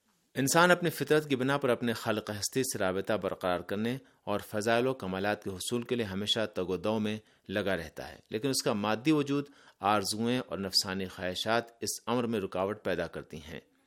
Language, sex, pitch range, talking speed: Urdu, male, 100-130 Hz, 195 wpm